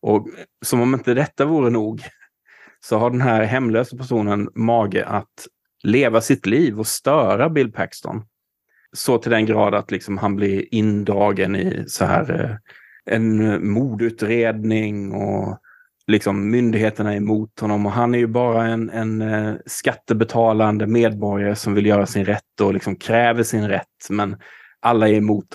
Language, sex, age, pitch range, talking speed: Swedish, male, 30-49, 105-115 Hz, 140 wpm